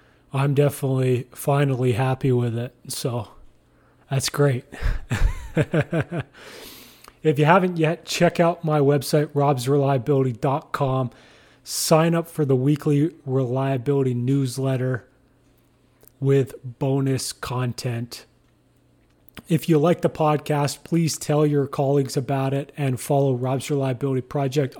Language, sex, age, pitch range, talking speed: English, male, 30-49, 130-150 Hz, 105 wpm